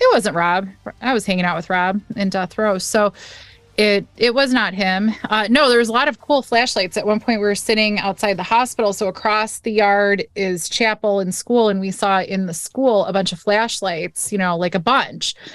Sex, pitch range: female, 180-215 Hz